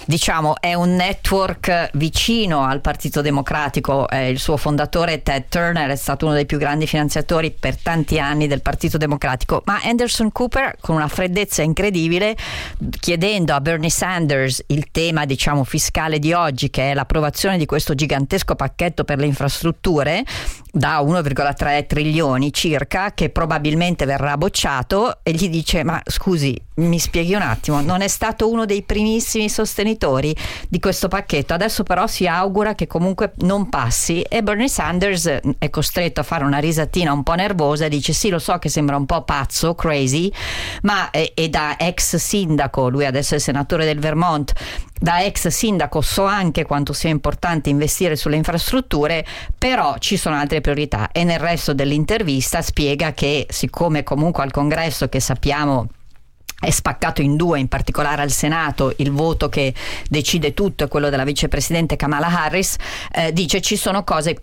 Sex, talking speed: female, 165 wpm